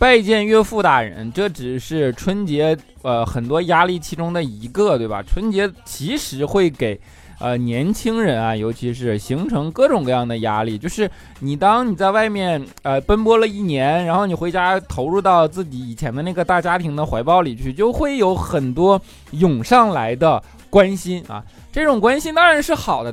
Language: Chinese